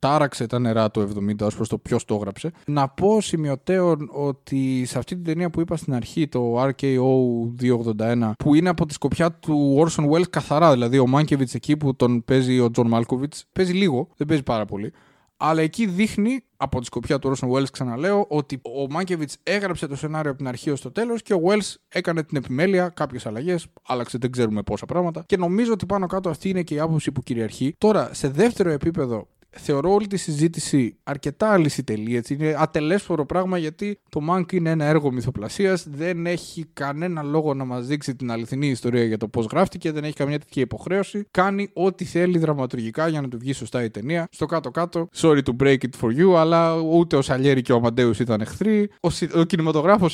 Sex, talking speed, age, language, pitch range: male, 200 wpm, 20-39, Greek, 125-170 Hz